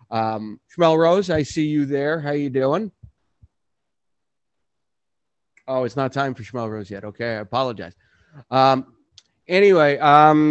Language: English